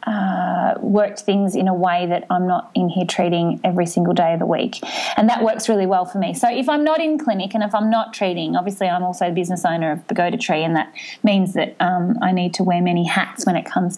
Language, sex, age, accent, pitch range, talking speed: English, female, 20-39, Australian, 180-225 Hz, 260 wpm